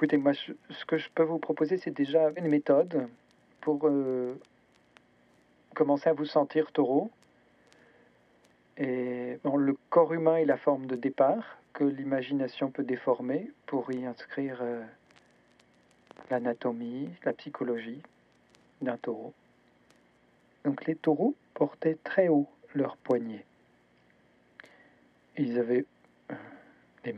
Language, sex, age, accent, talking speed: French, male, 50-69, French, 115 wpm